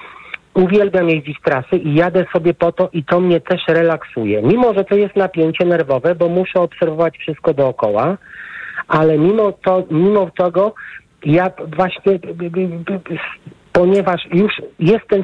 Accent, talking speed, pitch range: native, 135 wpm, 150-195 Hz